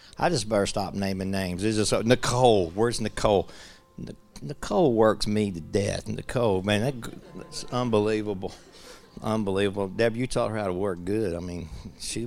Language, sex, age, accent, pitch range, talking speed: English, male, 50-69, American, 100-120 Hz, 175 wpm